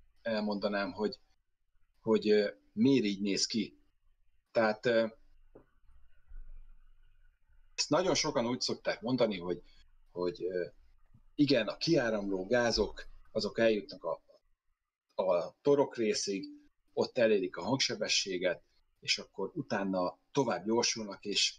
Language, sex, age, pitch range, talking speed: Hungarian, male, 30-49, 95-125 Hz, 100 wpm